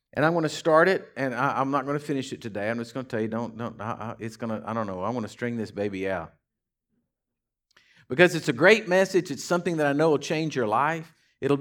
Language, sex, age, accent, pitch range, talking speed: English, male, 50-69, American, 135-190 Hz, 260 wpm